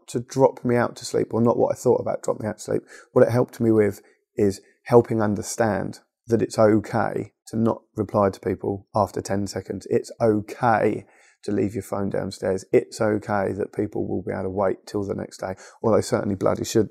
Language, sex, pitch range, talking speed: English, male, 105-125 Hz, 215 wpm